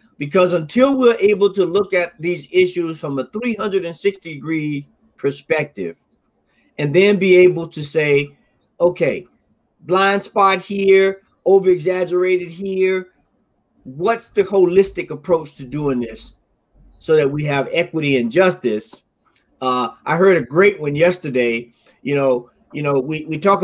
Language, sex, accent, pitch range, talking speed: English, male, American, 160-205 Hz, 135 wpm